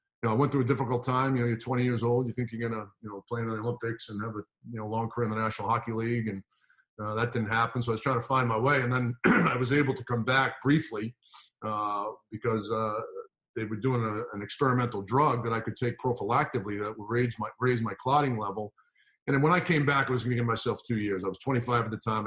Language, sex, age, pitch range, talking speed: English, male, 40-59, 110-130 Hz, 275 wpm